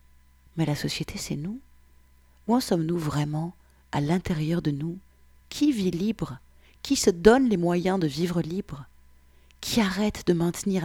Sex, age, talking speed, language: female, 30-49, 155 wpm, French